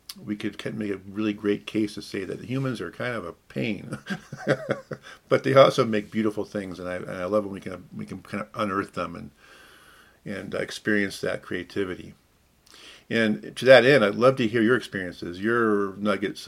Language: English